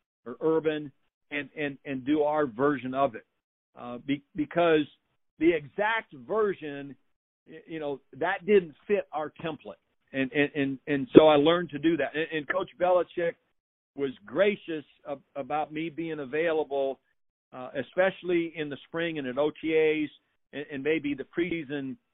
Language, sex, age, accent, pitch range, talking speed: English, male, 50-69, American, 135-165 Hz, 155 wpm